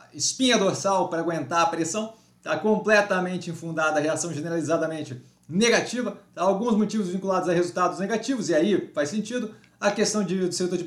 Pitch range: 145-185 Hz